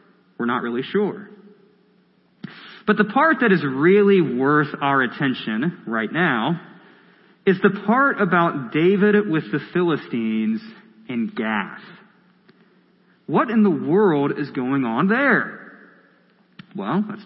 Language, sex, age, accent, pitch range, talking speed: English, male, 30-49, American, 160-210 Hz, 120 wpm